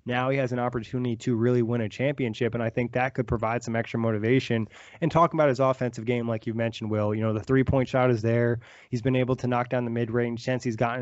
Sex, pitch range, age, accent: male, 115-130 Hz, 20-39, American